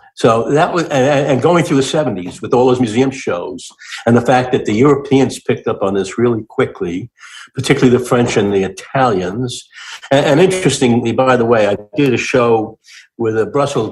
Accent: American